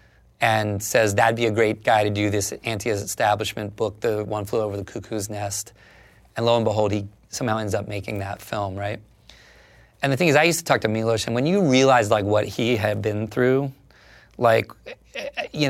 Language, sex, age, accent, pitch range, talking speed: English, male, 30-49, American, 105-135 Hz, 205 wpm